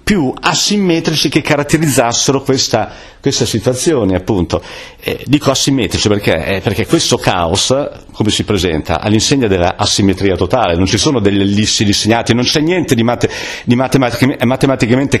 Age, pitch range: 50-69, 105-140 Hz